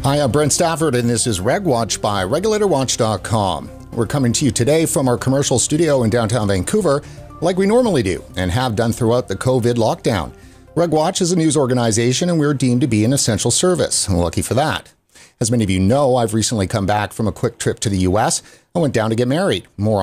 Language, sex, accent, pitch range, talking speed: English, male, American, 105-140 Hz, 215 wpm